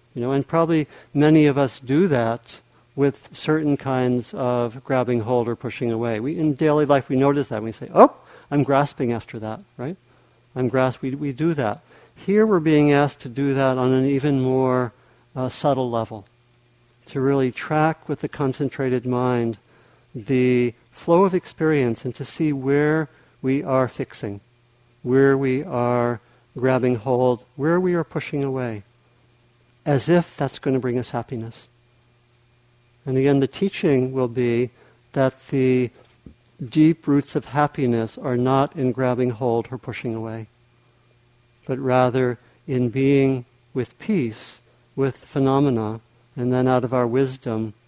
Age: 50-69